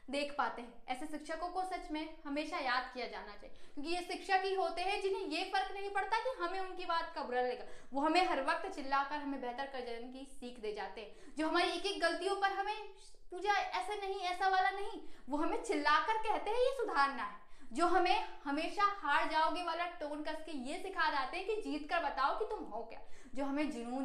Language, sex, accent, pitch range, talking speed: Hindi, female, native, 265-360 Hz, 170 wpm